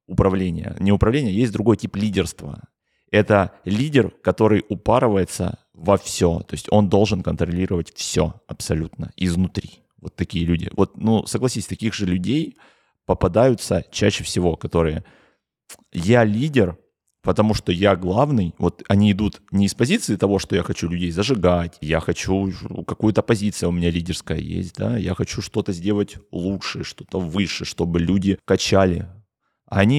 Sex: male